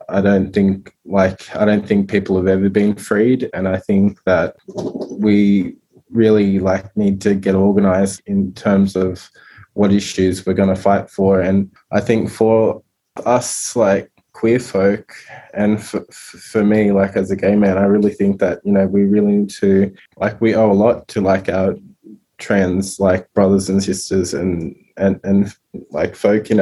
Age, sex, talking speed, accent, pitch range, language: 20-39, male, 180 wpm, Australian, 95-100 Hz, English